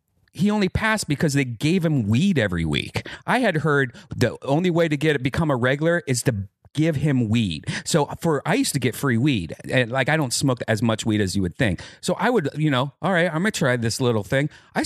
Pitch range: 115-160 Hz